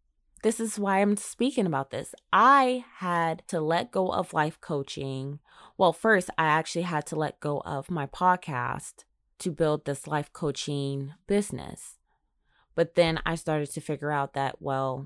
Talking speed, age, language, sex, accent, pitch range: 165 wpm, 20-39, English, female, American, 140-175 Hz